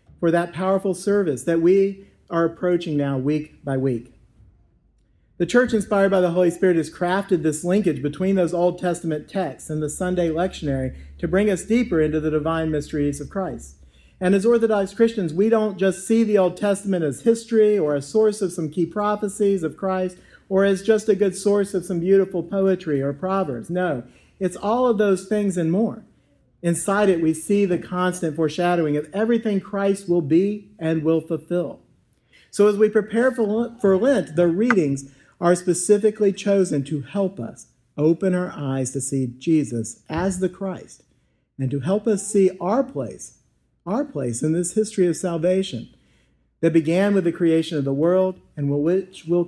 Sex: male